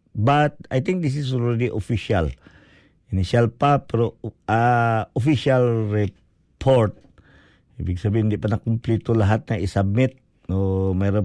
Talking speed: 125 wpm